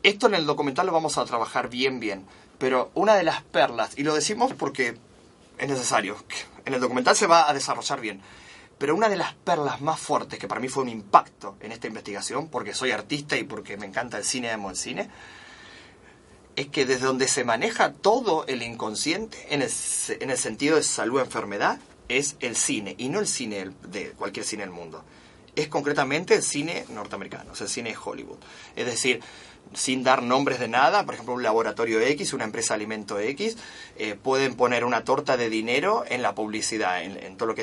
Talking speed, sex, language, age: 205 wpm, male, Spanish, 30-49